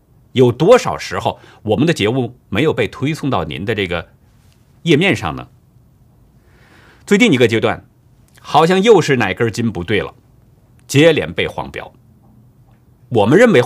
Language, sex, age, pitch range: Chinese, male, 50-69, 115-155 Hz